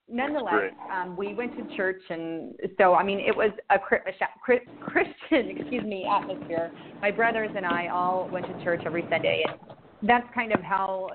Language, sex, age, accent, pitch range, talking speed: English, female, 30-49, American, 175-210 Hz, 170 wpm